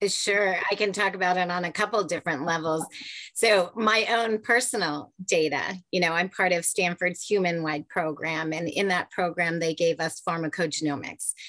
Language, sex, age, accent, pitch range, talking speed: English, female, 30-49, American, 160-185 Hz, 170 wpm